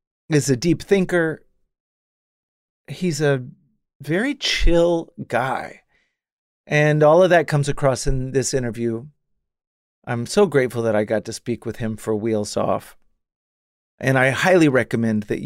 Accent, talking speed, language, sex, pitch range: American, 140 wpm, English, male, 120-150 Hz